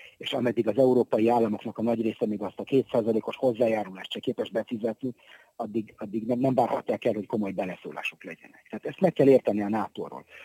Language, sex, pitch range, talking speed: Hungarian, male, 110-150 Hz, 190 wpm